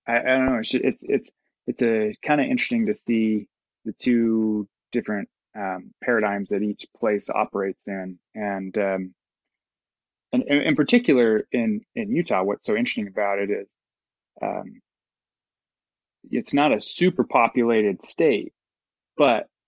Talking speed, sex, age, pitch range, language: 140 wpm, male, 20-39, 105-130 Hz, English